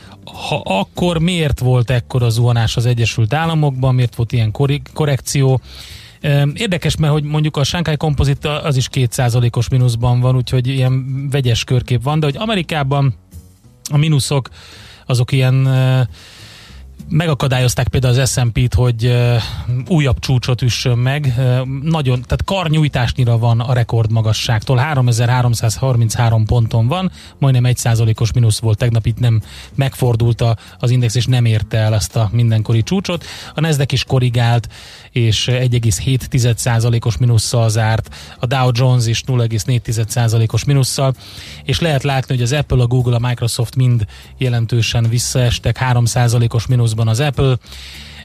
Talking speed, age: 140 wpm, 30-49